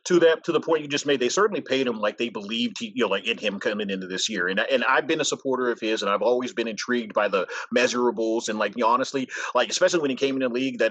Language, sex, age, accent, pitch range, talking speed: English, male, 30-49, American, 125-185 Hz, 290 wpm